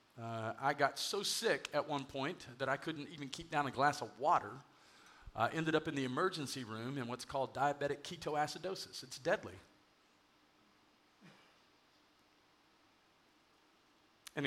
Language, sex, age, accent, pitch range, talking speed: English, male, 50-69, American, 140-180 Hz, 135 wpm